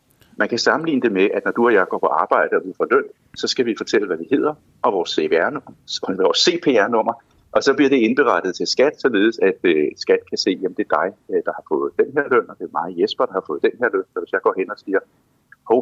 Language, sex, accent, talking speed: Danish, male, native, 260 wpm